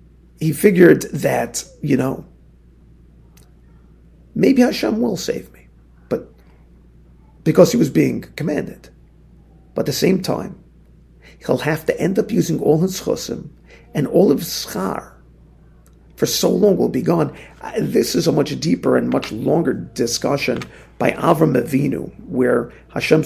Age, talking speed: 50-69, 140 wpm